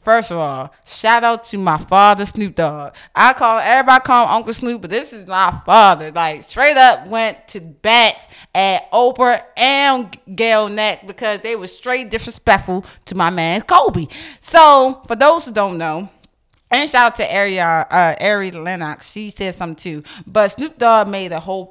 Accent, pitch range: American, 180-235 Hz